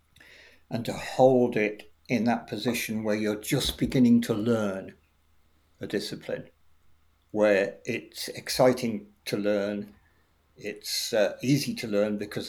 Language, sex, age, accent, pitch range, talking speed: English, male, 60-79, British, 80-115 Hz, 125 wpm